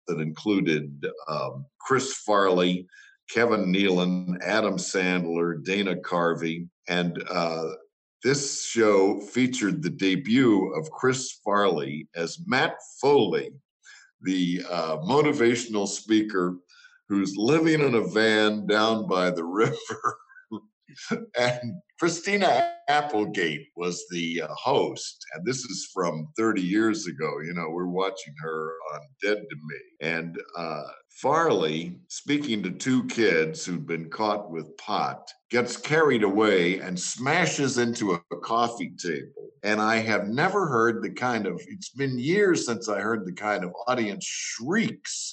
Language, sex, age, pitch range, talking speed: English, male, 60-79, 85-120 Hz, 135 wpm